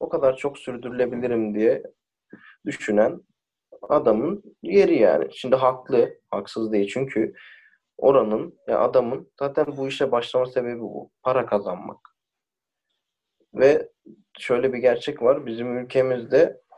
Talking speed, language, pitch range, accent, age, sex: 115 wpm, Turkish, 110-140 Hz, native, 30-49, male